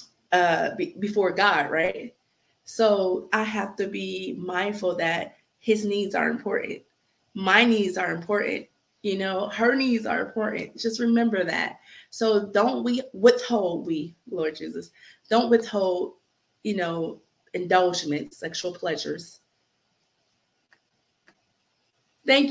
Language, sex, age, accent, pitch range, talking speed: English, female, 20-39, American, 170-220 Hz, 115 wpm